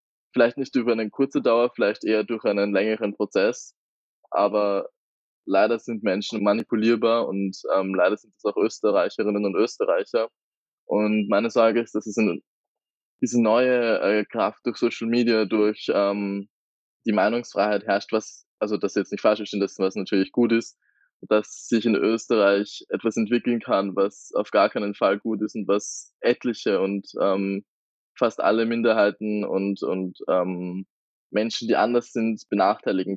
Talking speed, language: 155 wpm, German